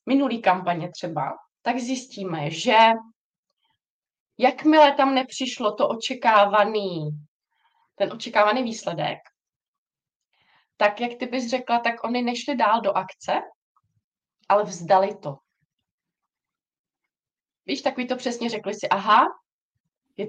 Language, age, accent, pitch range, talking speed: Czech, 20-39, native, 195-255 Hz, 105 wpm